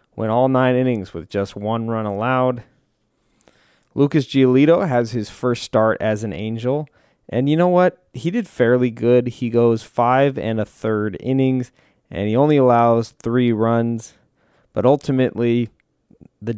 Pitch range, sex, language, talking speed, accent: 110-135 Hz, male, English, 150 wpm, American